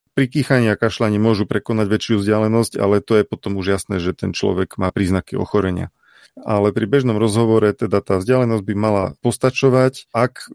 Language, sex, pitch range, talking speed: Slovak, male, 100-115 Hz, 175 wpm